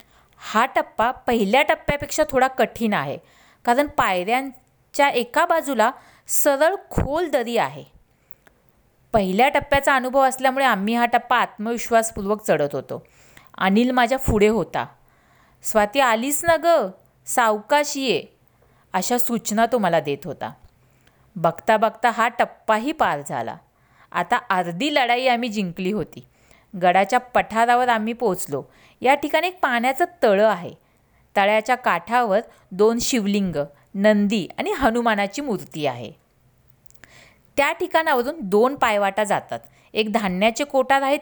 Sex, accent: female, native